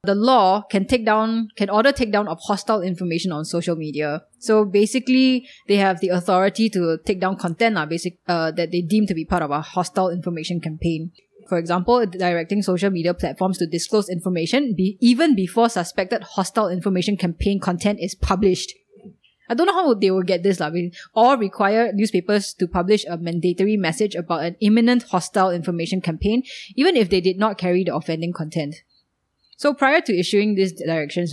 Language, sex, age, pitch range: English, female, 20-39, 175-220 Hz